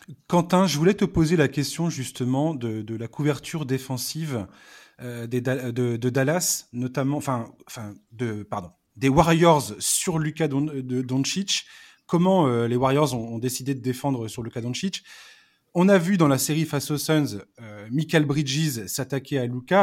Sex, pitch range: male, 125-165 Hz